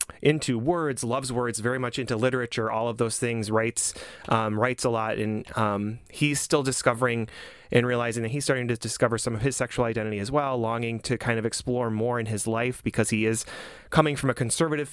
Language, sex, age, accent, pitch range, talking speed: English, male, 30-49, American, 110-125 Hz, 210 wpm